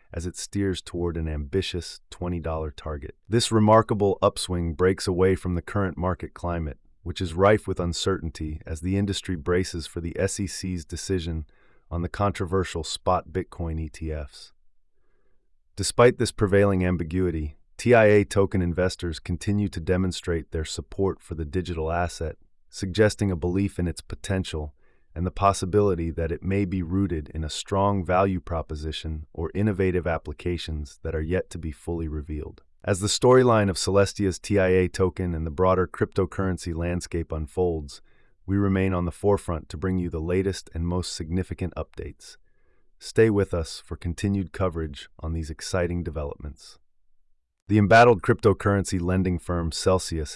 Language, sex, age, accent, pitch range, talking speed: English, male, 30-49, American, 80-95 Hz, 150 wpm